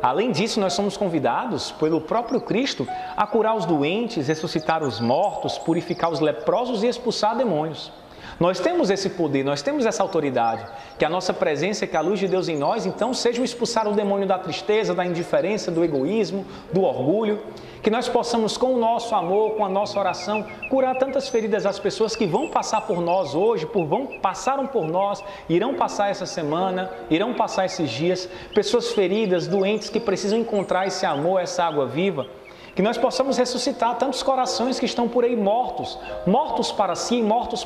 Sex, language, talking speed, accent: male, Portuguese, 180 wpm, Brazilian